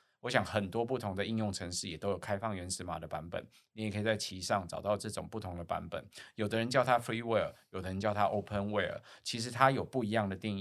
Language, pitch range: Chinese, 95-115 Hz